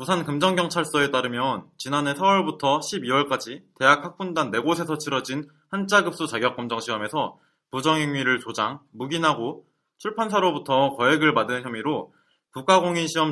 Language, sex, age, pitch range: Korean, male, 20-39, 125-175 Hz